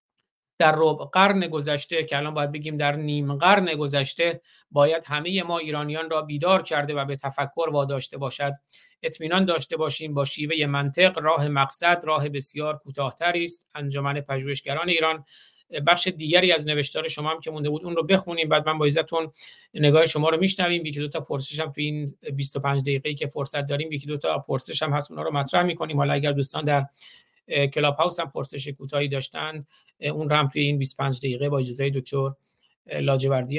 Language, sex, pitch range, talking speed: Persian, male, 140-160 Hz, 175 wpm